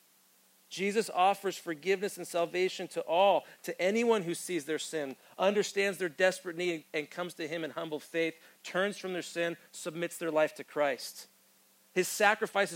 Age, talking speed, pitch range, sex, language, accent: 40-59, 165 wpm, 180-215 Hz, male, English, American